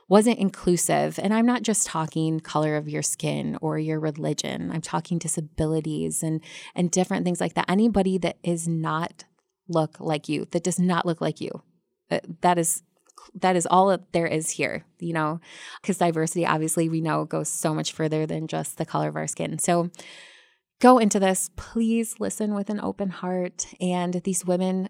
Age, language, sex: 20-39, English, female